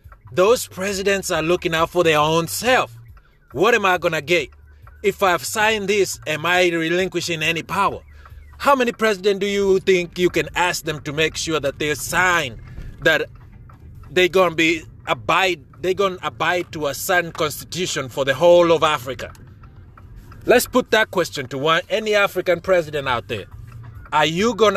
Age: 30-49